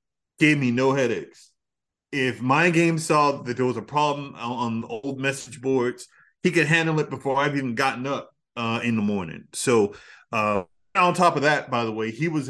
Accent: American